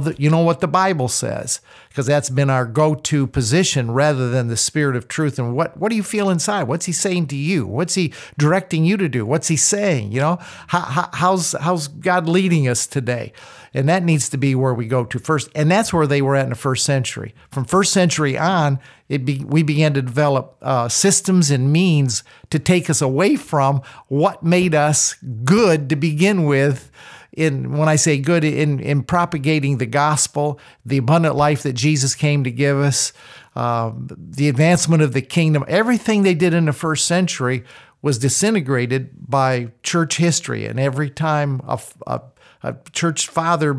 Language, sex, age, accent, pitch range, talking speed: English, male, 50-69, American, 135-170 Hz, 195 wpm